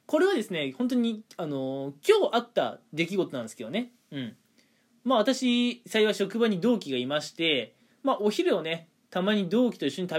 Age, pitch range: 20-39, 175-255 Hz